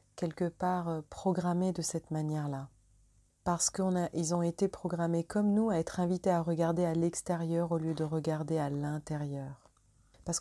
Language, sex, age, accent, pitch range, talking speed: English, female, 30-49, French, 160-180 Hz, 180 wpm